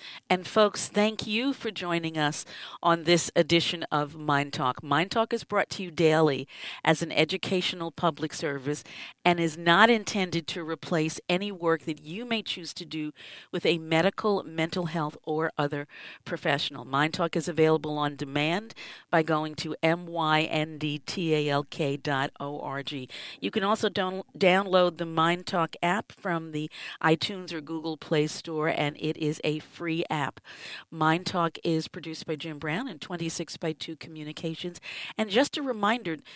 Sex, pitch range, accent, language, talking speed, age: female, 155-190 Hz, American, English, 155 wpm, 50-69